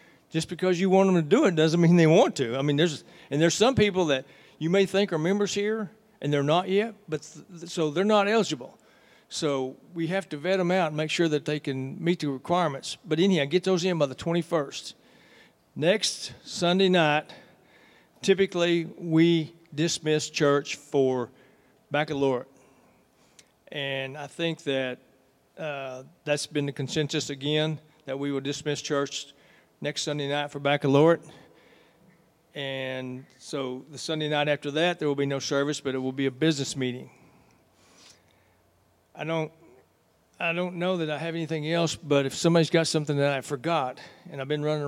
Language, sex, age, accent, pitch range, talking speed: English, male, 60-79, American, 140-170 Hz, 175 wpm